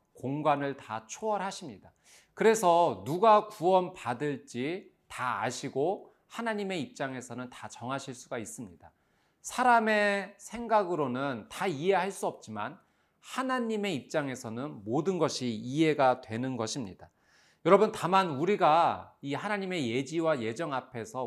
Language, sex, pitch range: Korean, male, 125-185 Hz